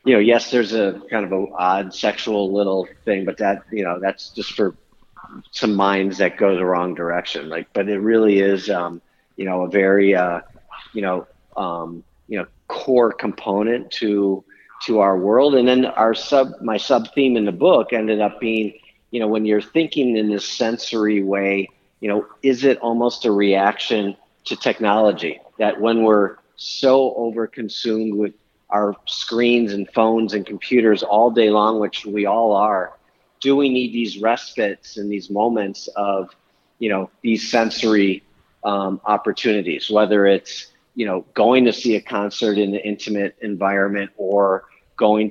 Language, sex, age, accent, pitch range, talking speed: English, male, 50-69, American, 100-110 Hz, 170 wpm